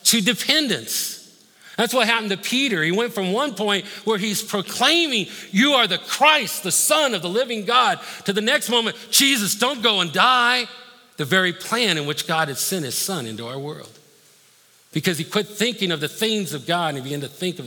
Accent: American